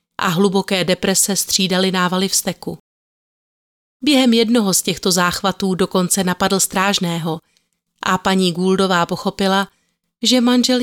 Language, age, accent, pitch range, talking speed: Czech, 30-49, native, 180-230 Hz, 115 wpm